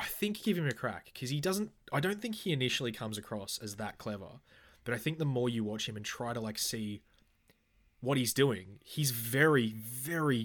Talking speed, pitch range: 220 wpm, 105-130 Hz